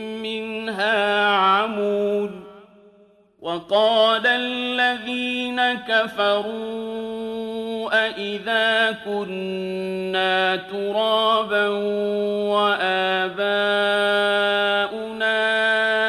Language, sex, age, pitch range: Arabic, male, 40-59, 200-220 Hz